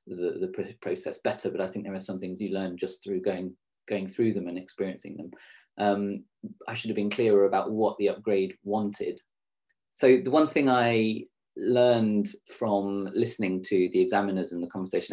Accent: British